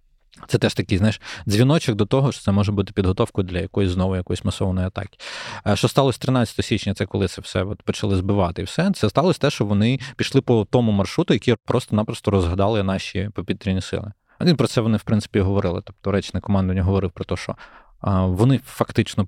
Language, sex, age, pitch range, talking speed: Ukrainian, male, 20-39, 95-115 Hz, 190 wpm